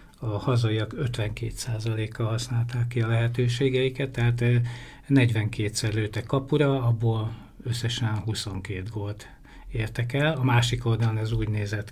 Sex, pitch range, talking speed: male, 110-130 Hz, 115 wpm